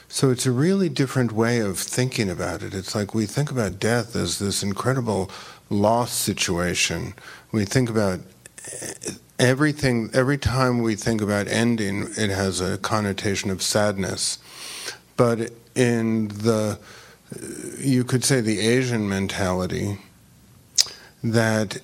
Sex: male